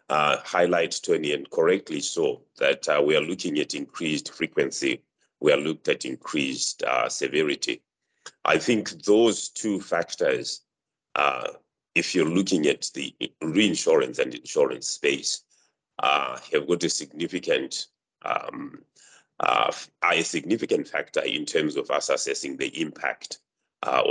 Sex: male